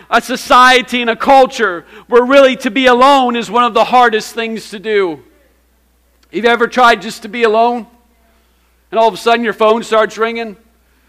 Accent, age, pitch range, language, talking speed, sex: American, 50-69, 225-275 Hz, English, 190 wpm, male